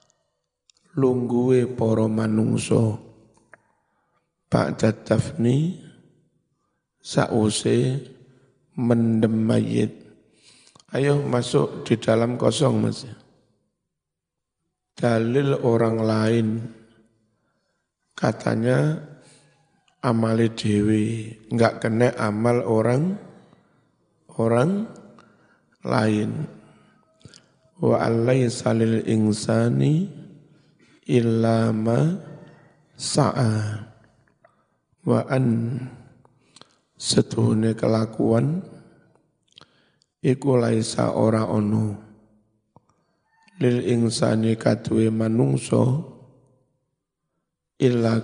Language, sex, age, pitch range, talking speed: Indonesian, male, 60-79, 110-135 Hz, 50 wpm